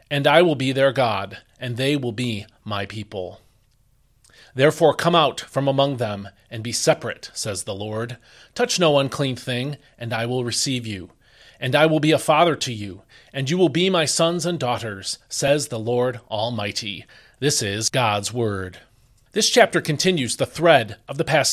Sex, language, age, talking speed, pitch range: male, English, 40-59, 180 wpm, 120-175 Hz